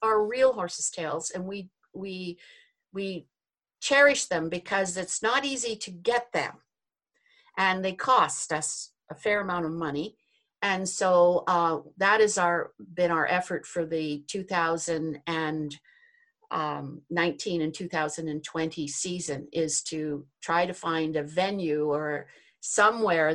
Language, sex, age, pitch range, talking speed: English, female, 50-69, 160-205 Hz, 130 wpm